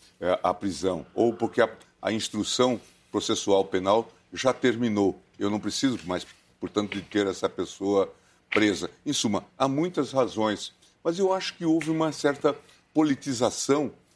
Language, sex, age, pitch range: Portuguese, male, 60-79, 100-140 Hz